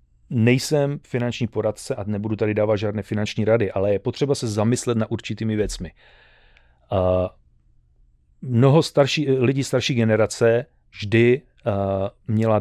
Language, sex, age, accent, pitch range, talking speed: Czech, male, 30-49, native, 100-120 Hz, 120 wpm